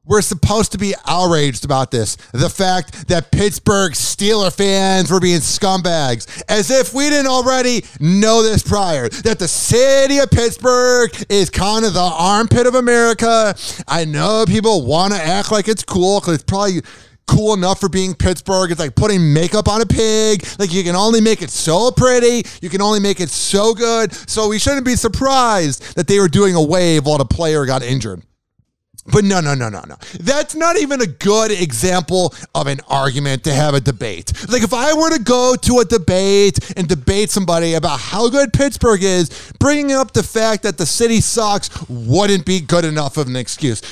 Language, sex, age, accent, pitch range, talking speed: English, male, 30-49, American, 160-220 Hz, 195 wpm